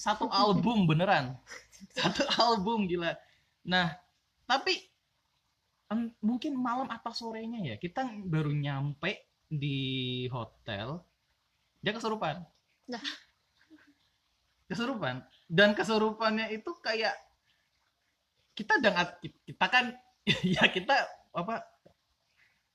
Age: 20-39